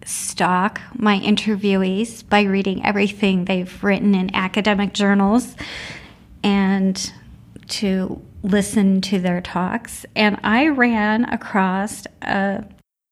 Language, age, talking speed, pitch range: English, 40-59, 95 wpm, 200-235 Hz